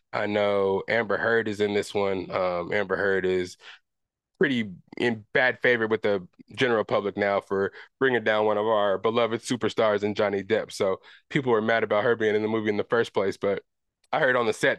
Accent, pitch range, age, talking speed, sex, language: American, 105-130 Hz, 20-39, 210 wpm, male, English